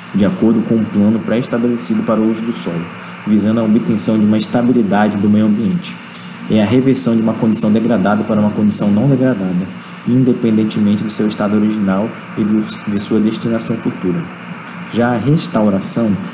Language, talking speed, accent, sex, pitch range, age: Portuguese, 165 wpm, Brazilian, male, 105-120 Hz, 20-39